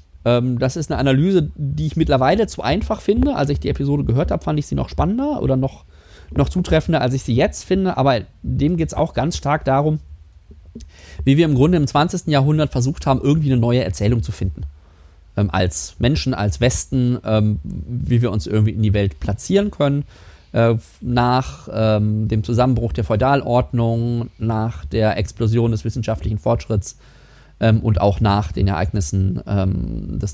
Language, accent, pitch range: German, German, 95-140 Hz